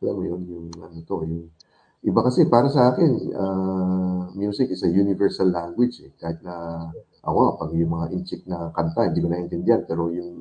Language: Filipino